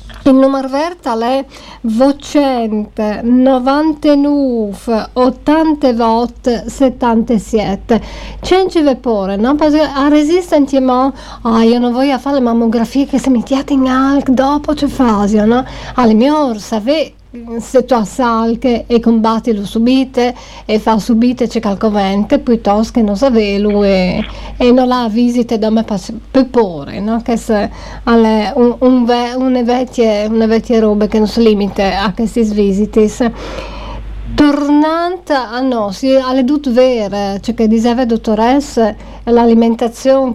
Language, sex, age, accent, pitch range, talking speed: Italian, female, 50-69, native, 220-265 Hz, 130 wpm